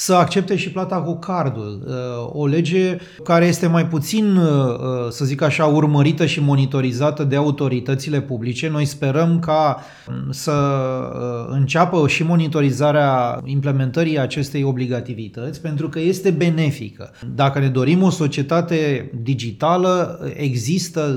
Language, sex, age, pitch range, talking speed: English, male, 30-49, 135-170 Hz, 120 wpm